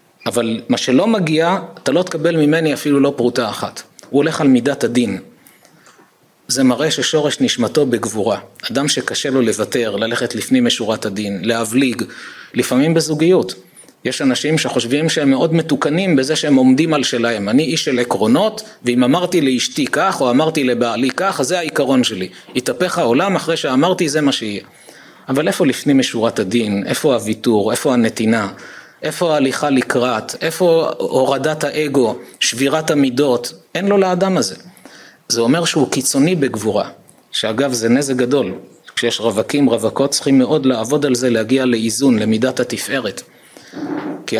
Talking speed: 150 wpm